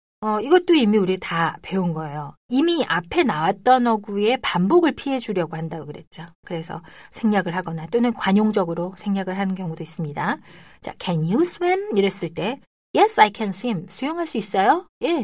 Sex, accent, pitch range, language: female, native, 170-250 Hz, Korean